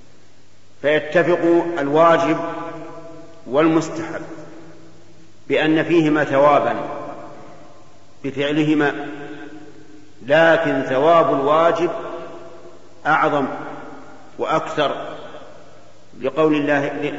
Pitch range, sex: 135-165 Hz, male